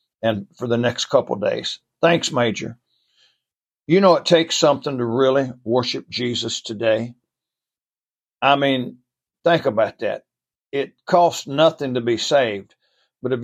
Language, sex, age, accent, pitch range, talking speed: English, male, 60-79, American, 125-150 Hz, 145 wpm